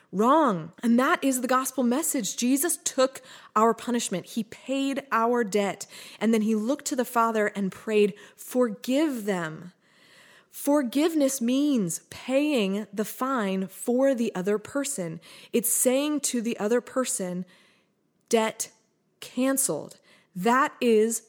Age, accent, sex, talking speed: 20-39, American, female, 125 wpm